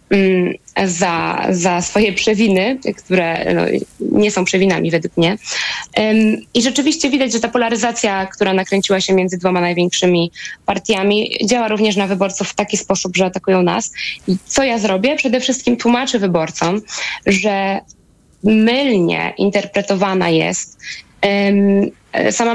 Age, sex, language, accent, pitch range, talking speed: 20-39, female, Polish, native, 185-225 Hz, 120 wpm